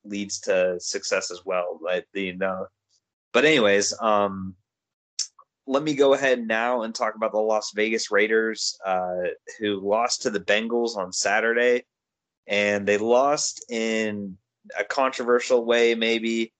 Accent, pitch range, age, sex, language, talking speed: American, 100-115 Hz, 20-39, male, English, 135 wpm